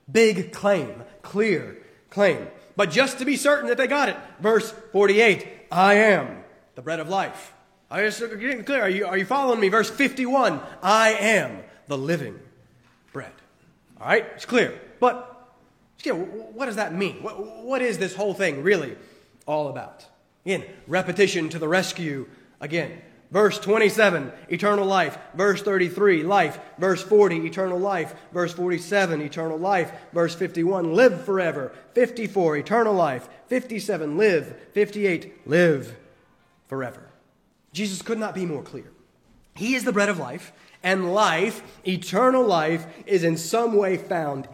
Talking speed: 145 wpm